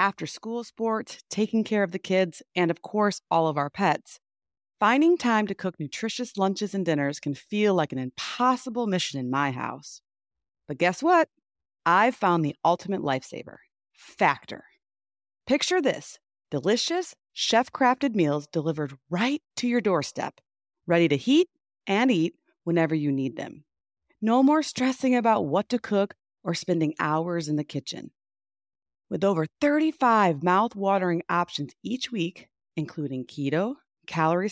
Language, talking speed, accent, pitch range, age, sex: English, 145 wpm, American, 150-230 Hz, 30-49, female